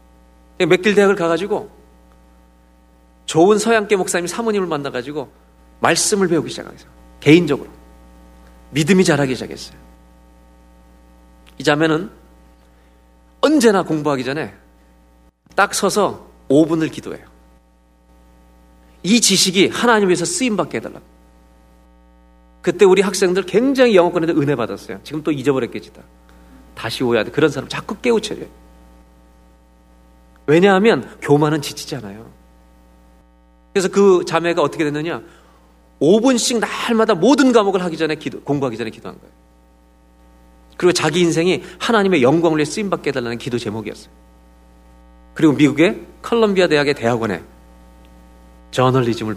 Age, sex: 40-59, male